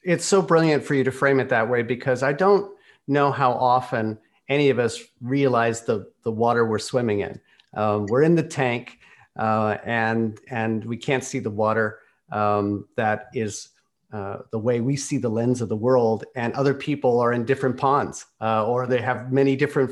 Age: 40-59